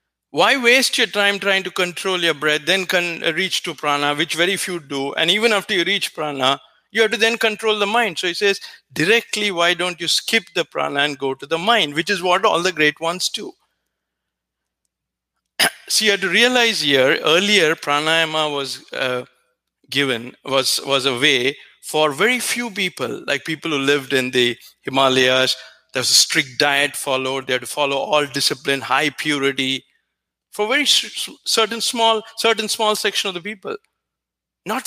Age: 50-69